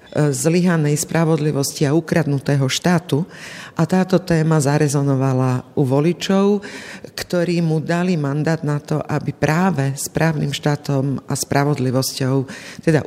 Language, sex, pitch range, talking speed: Slovak, female, 145-175 Hz, 110 wpm